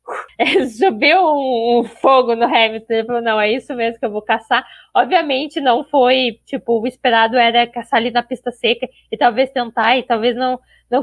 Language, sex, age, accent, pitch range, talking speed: Portuguese, female, 10-29, Brazilian, 240-300 Hz, 185 wpm